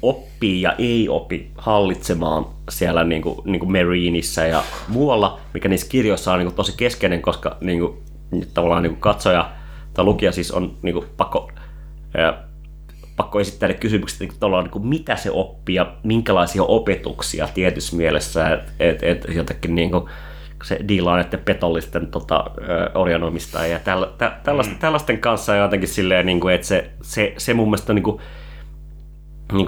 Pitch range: 85-115 Hz